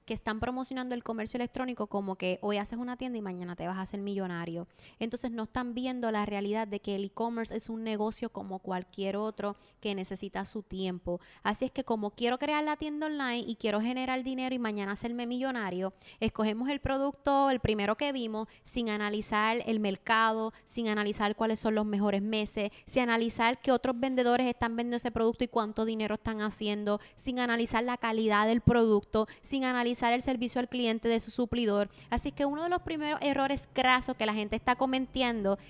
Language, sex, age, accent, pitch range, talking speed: Spanish, female, 20-39, American, 205-255 Hz, 195 wpm